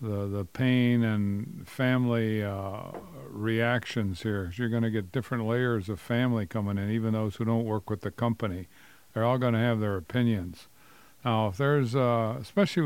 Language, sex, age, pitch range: English, male, 50-69, 110-135 Hz